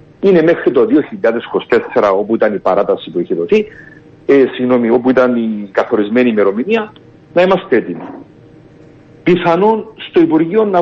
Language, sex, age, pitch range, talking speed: Greek, male, 50-69, 125-180 Hz, 135 wpm